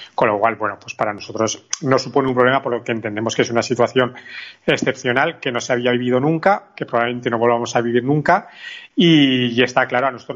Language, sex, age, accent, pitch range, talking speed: Spanish, male, 30-49, Spanish, 120-135 Hz, 225 wpm